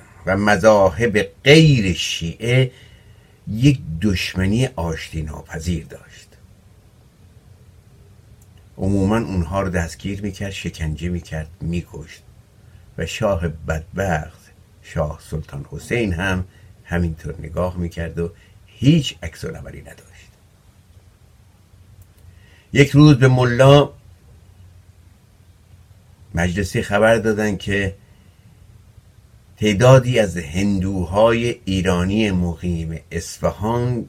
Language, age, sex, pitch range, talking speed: Persian, 60-79, male, 90-105 Hz, 80 wpm